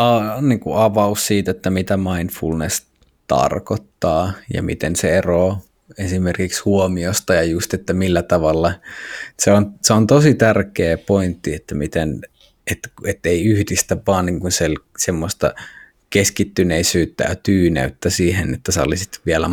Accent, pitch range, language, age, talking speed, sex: native, 85-105 Hz, Finnish, 20-39, 130 wpm, male